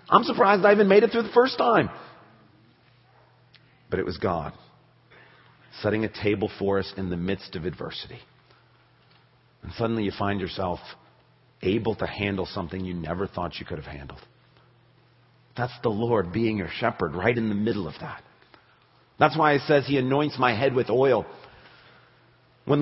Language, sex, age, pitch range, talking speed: English, male, 40-59, 90-130 Hz, 165 wpm